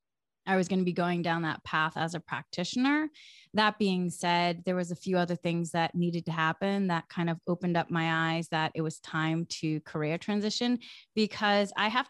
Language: English